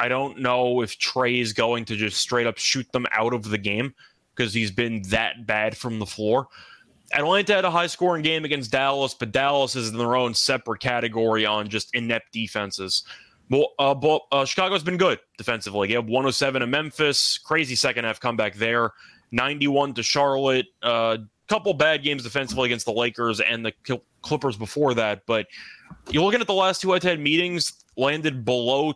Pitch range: 120-150 Hz